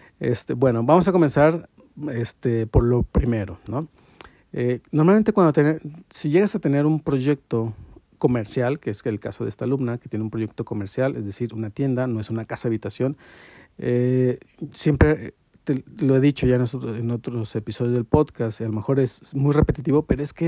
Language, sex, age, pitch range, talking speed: Spanish, male, 50-69, 115-145 Hz, 190 wpm